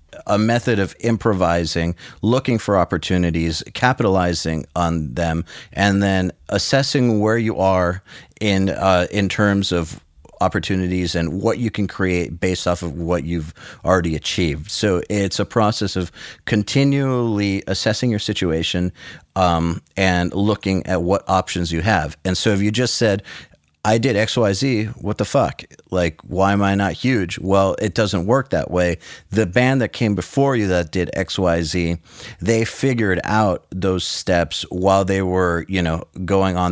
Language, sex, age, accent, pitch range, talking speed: English, male, 40-59, American, 85-105 Hz, 165 wpm